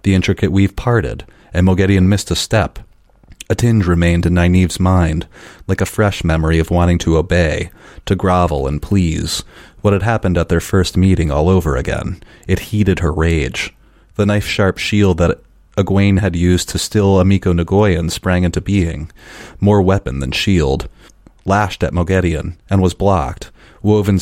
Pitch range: 85-100 Hz